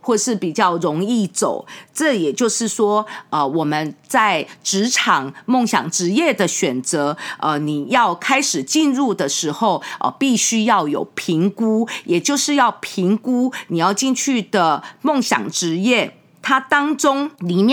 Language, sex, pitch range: English, female, 180-255 Hz